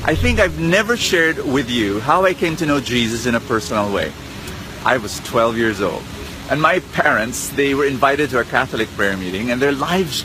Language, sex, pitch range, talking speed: English, male, 105-145 Hz, 210 wpm